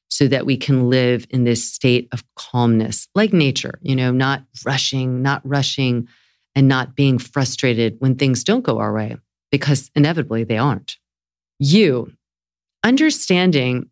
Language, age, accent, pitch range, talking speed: English, 40-59, American, 120-150 Hz, 145 wpm